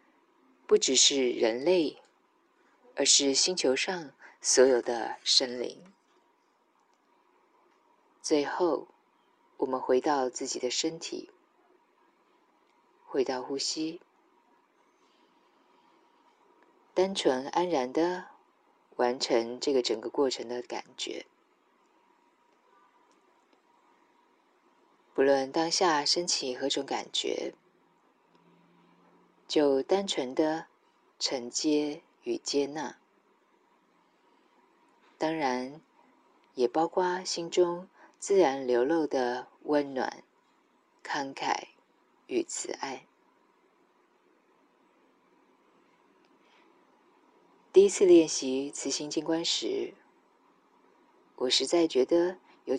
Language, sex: Chinese, female